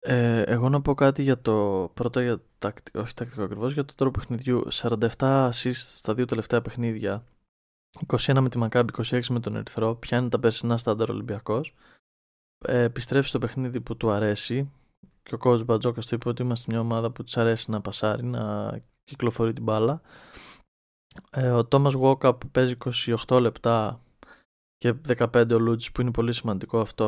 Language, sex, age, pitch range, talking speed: Greek, male, 20-39, 110-130 Hz, 170 wpm